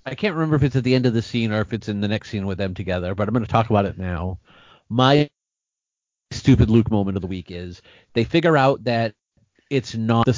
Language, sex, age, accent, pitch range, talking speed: English, male, 40-59, American, 95-125 Hz, 255 wpm